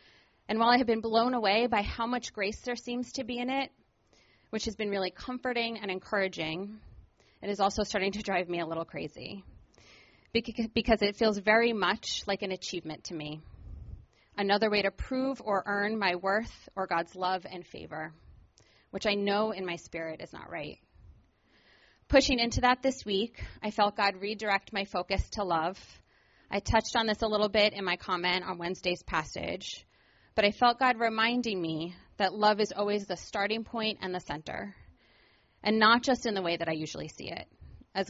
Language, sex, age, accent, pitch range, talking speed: English, female, 30-49, American, 175-220 Hz, 190 wpm